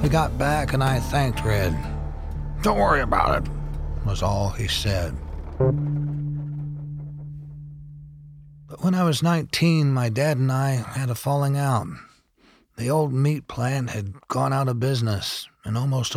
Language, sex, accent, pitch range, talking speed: English, male, American, 100-140 Hz, 145 wpm